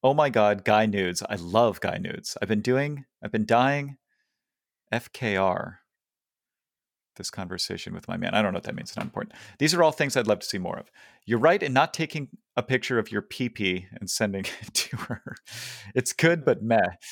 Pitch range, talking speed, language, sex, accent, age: 100-130 Hz, 205 wpm, English, male, American, 40-59